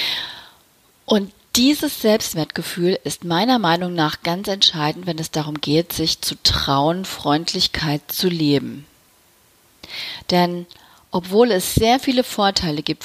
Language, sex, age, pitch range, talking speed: German, female, 30-49, 155-195 Hz, 120 wpm